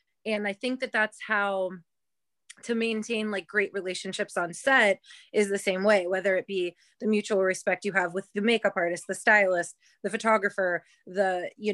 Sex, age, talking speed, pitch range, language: female, 20-39, 180 wpm, 185-215 Hz, English